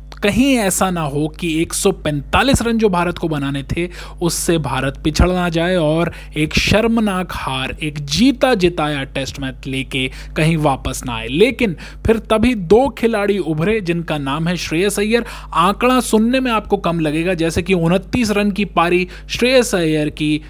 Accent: native